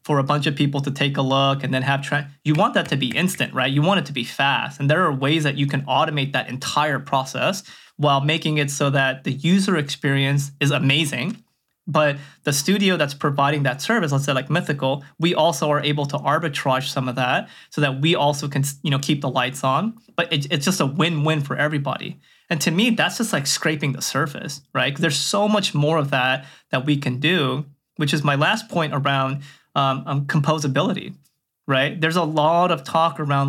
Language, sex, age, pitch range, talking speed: English, male, 20-39, 135-155 Hz, 215 wpm